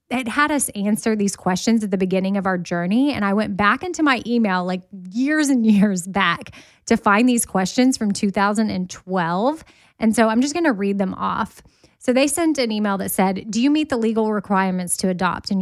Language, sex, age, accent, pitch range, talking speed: English, female, 20-39, American, 190-235 Hz, 210 wpm